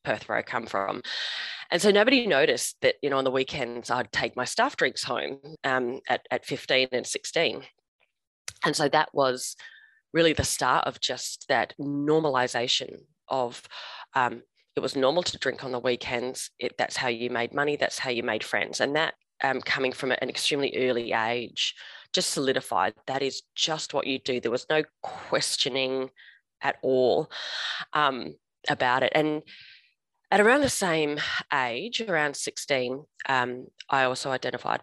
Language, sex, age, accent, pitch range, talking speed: English, female, 20-39, Australian, 125-145 Hz, 165 wpm